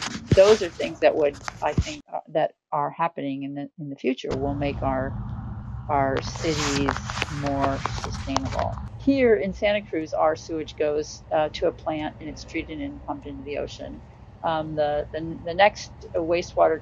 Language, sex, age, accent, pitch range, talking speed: English, female, 40-59, American, 140-175 Hz, 170 wpm